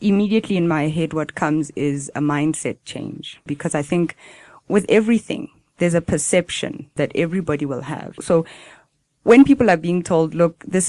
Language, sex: English, female